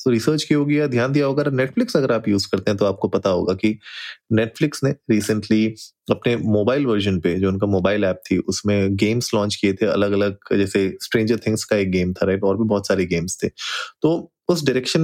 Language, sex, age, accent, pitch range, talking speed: Hindi, male, 20-39, native, 100-125 Hz, 220 wpm